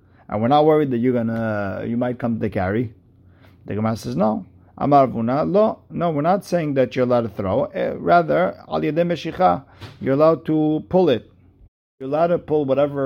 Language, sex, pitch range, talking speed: English, male, 110-135 Hz, 170 wpm